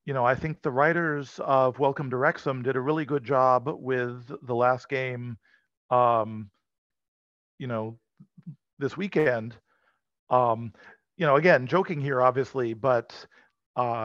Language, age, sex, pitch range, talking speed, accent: English, 50-69, male, 120-140 Hz, 140 wpm, American